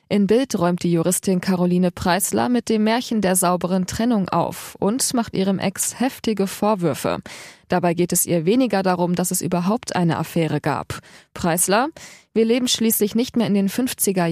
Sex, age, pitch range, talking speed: female, 20-39, 175-225 Hz, 170 wpm